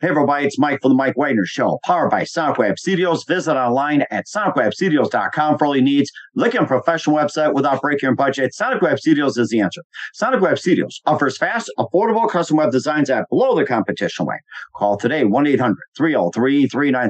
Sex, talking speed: male, 190 wpm